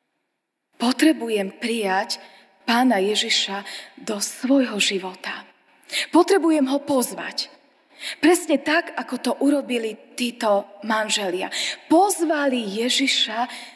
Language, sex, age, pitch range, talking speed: Slovak, female, 20-39, 215-290 Hz, 85 wpm